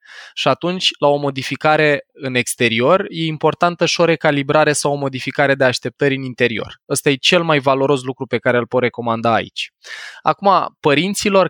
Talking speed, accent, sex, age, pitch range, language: 170 wpm, native, male, 20-39, 120-145 Hz, Romanian